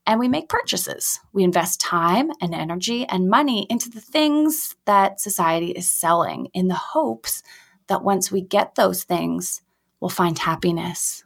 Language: English